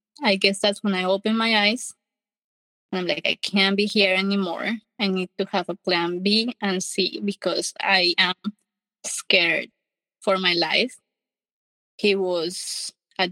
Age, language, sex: 20-39, English, female